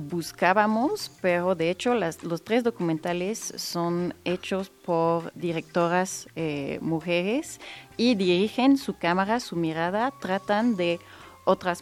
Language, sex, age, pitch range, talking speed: Spanish, female, 30-49, 160-190 Hz, 115 wpm